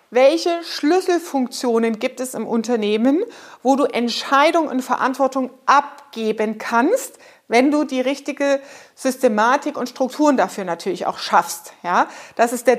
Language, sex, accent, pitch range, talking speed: German, female, German, 245-315 Hz, 130 wpm